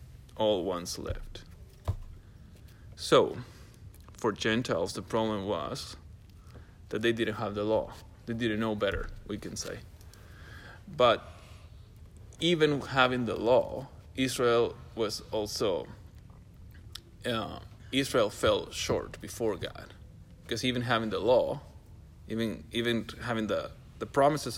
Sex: male